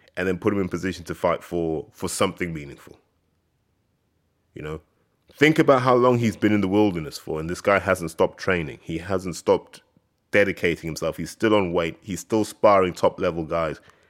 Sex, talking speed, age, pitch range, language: male, 185 wpm, 30-49, 85-110 Hz, English